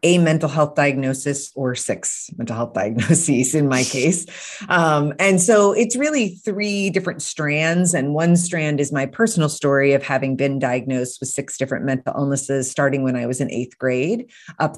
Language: English